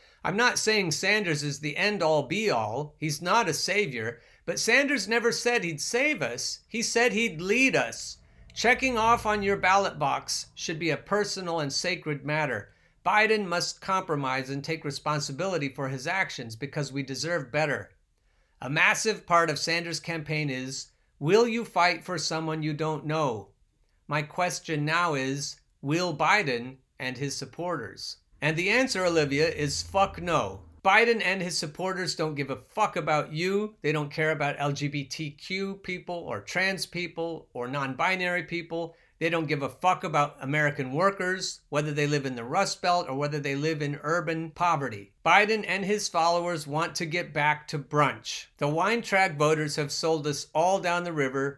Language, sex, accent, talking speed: English, male, American, 170 wpm